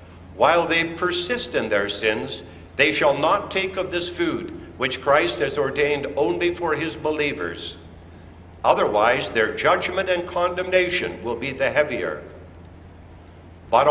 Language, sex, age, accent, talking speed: English, male, 60-79, American, 135 wpm